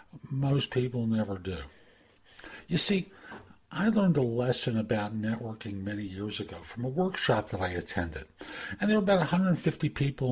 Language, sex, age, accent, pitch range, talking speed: English, male, 60-79, American, 110-150 Hz, 155 wpm